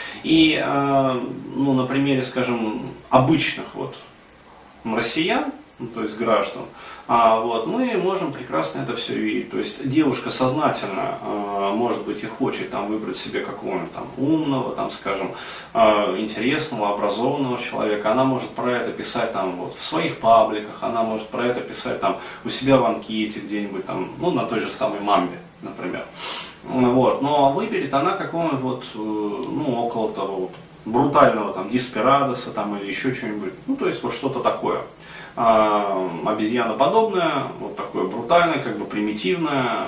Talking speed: 150 wpm